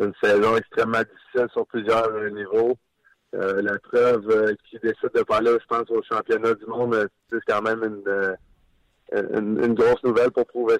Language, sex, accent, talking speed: French, male, French, 185 wpm